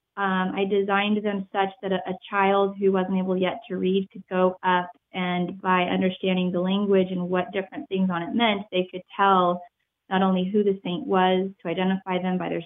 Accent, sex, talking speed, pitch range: American, female, 210 wpm, 180-205 Hz